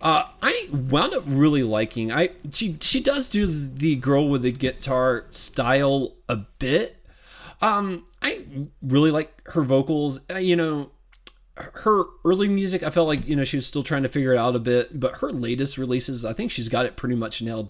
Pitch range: 120-145 Hz